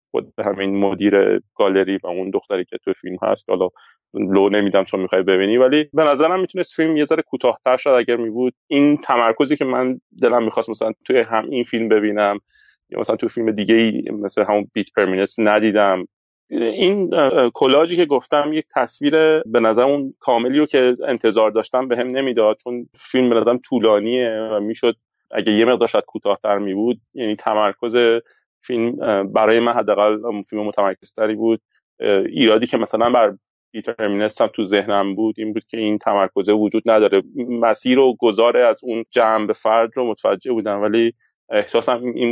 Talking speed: 165 wpm